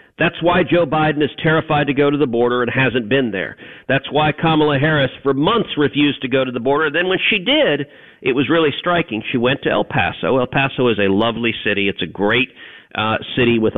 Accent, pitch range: American, 125-165 Hz